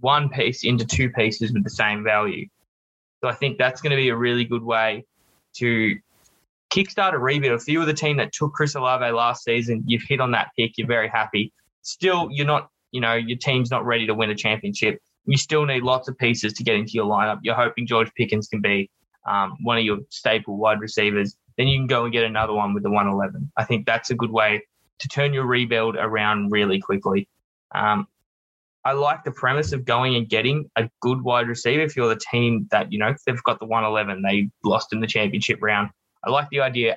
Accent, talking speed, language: Australian, 225 wpm, English